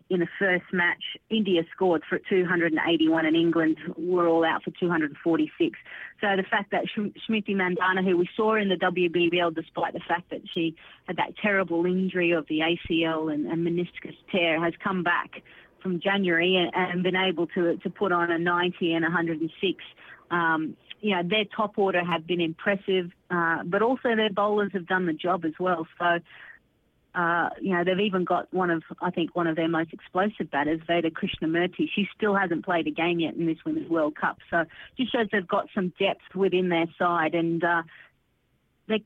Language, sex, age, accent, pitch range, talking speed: English, female, 30-49, Australian, 165-195 Hz, 190 wpm